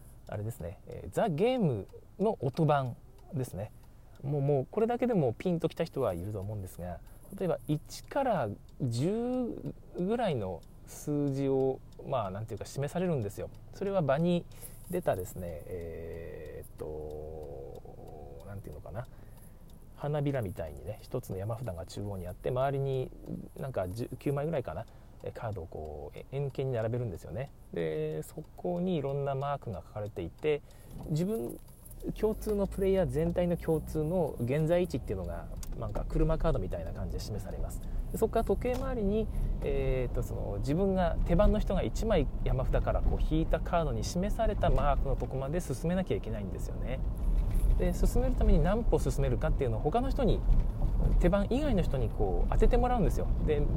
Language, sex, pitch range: Japanese, male, 105-170 Hz